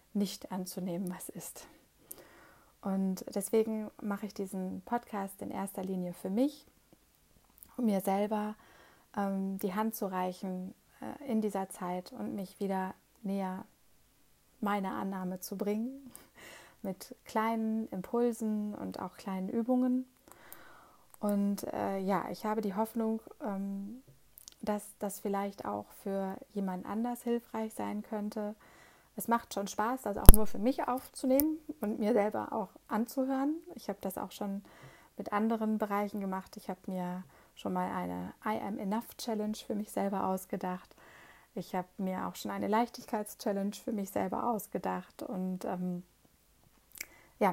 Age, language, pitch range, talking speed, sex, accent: 30-49, German, 190-225 Hz, 140 wpm, female, German